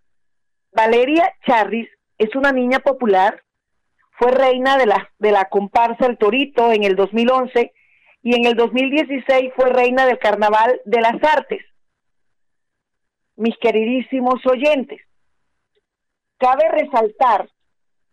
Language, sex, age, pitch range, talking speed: Spanish, female, 40-59, 225-270 Hz, 110 wpm